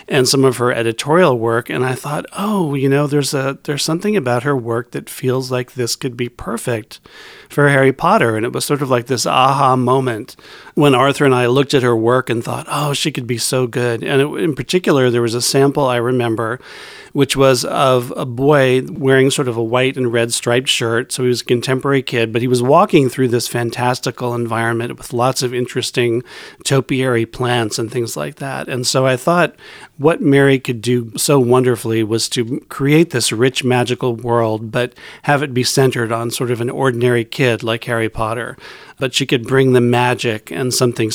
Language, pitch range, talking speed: English, 115-135 Hz, 205 wpm